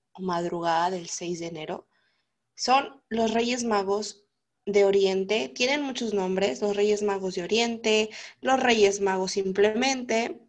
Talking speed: 135 wpm